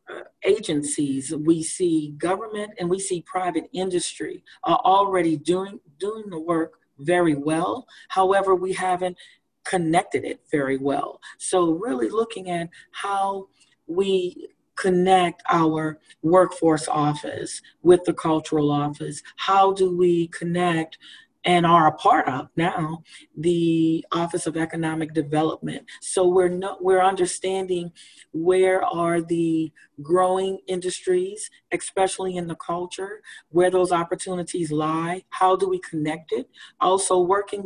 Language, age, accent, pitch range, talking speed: English, 40-59, American, 160-185 Hz, 125 wpm